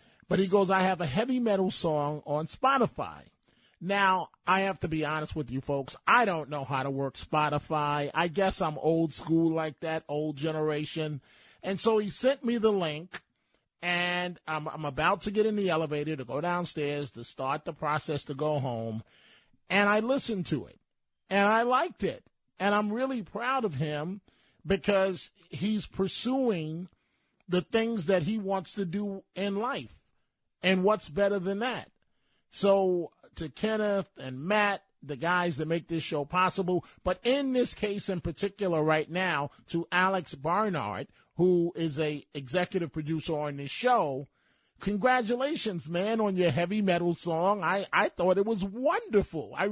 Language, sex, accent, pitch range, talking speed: English, male, American, 155-205 Hz, 170 wpm